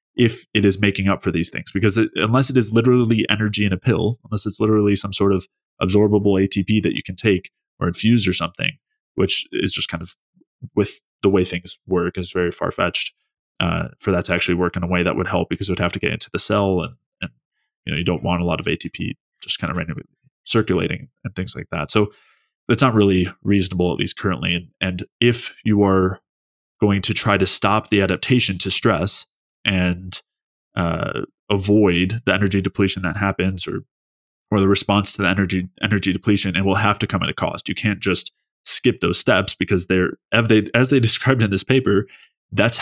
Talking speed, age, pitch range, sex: 215 wpm, 20-39, 95-105 Hz, male